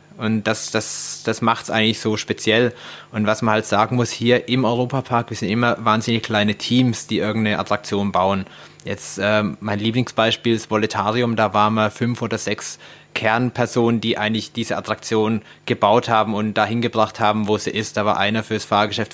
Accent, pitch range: German, 105-120 Hz